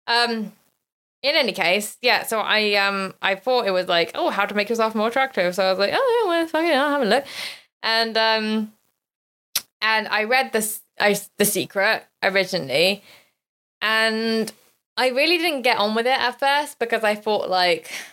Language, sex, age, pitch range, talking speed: English, female, 20-39, 190-235 Hz, 180 wpm